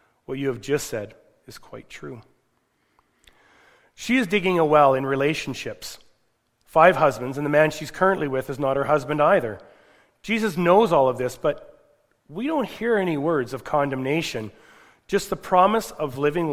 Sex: male